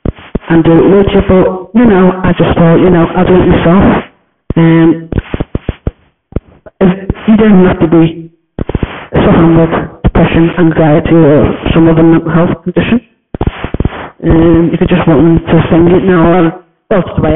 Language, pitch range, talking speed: English, 160-175 Hz, 165 wpm